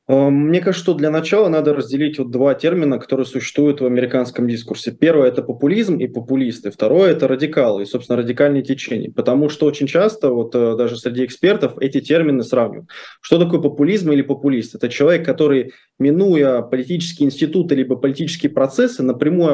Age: 20-39